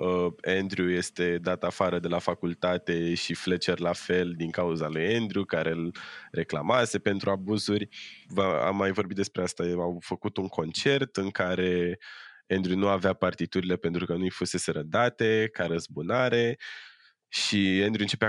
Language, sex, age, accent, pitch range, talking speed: Romanian, male, 20-39, native, 90-100 Hz, 150 wpm